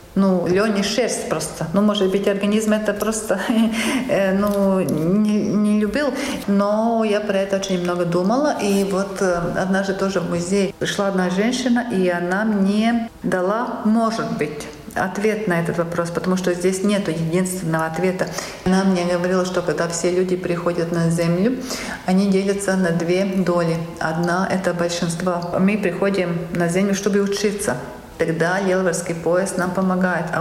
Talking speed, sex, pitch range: 155 wpm, female, 175-205 Hz